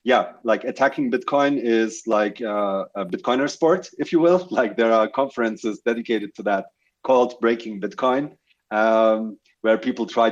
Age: 30-49